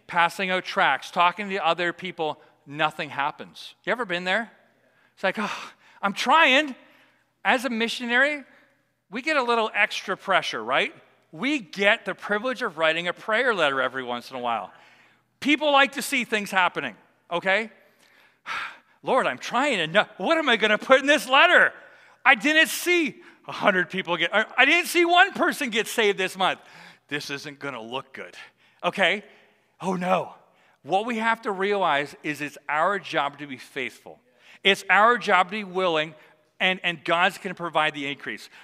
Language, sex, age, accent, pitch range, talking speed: English, male, 40-59, American, 165-230 Hz, 175 wpm